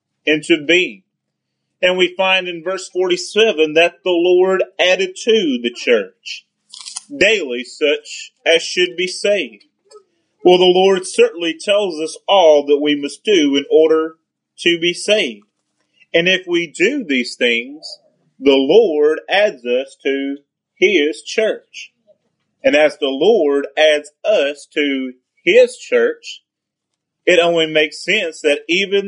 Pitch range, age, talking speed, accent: 145-230 Hz, 30-49, 135 wpm, American